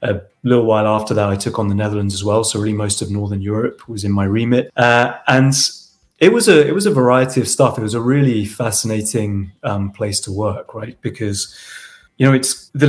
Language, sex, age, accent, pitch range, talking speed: English, male, 30-49, British, 105-125 Hz, 225 wpm